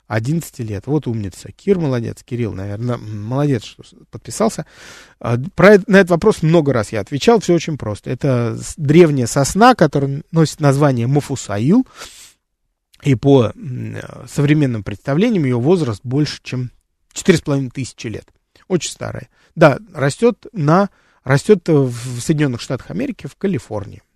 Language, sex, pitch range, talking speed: Russian, male, 115-160 Hz, 130 wpm